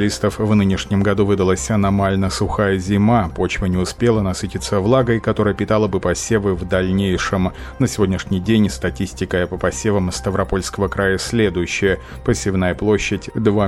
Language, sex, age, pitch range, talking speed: Russian, male, 30-49, 95-110 Hz, 130 wpm